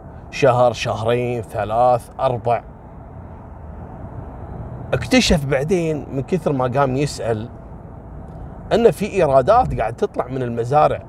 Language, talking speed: Arabic, 95 wpm